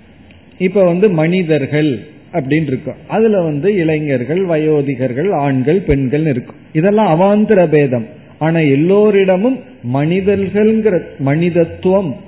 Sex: male